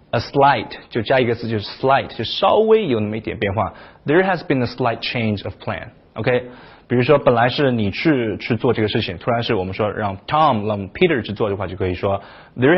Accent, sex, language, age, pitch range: native, male, Chinese, 20-39, 110-135 Hz